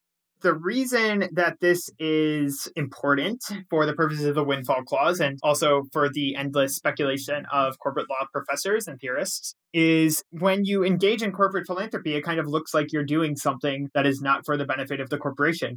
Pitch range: 135-175 Hz